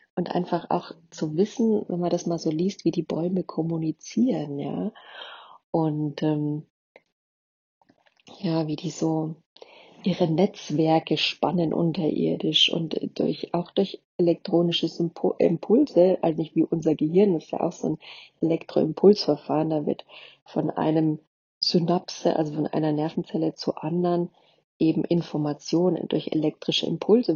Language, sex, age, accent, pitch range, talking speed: German, female, 40-59, German, 155-180 Hz, 130 wpm